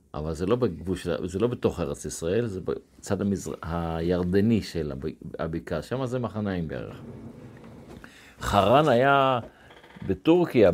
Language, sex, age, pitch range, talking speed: Hebrew, male, 50-69, 85-120 Hz, 125 wpm